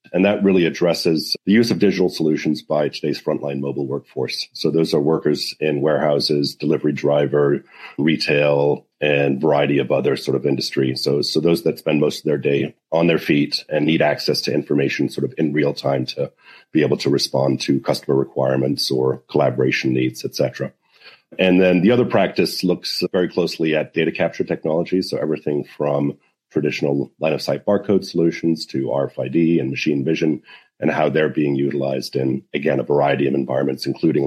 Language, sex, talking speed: English, male, 175 wpm